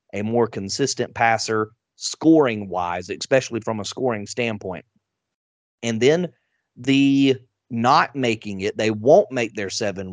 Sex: male